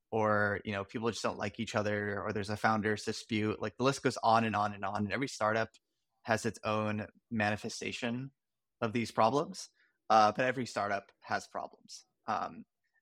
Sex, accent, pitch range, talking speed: male, American, 105-115 Hz, 185 wpm